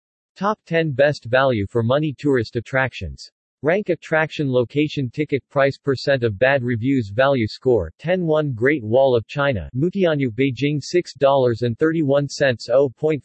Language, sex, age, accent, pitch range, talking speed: English, male, 40-59, American, 130-155 Hz, 120 wpm